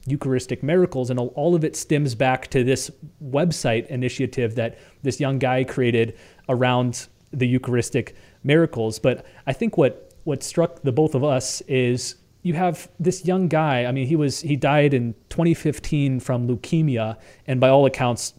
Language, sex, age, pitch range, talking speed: English, male, 30-49, 125-150 Hz, 165 wpm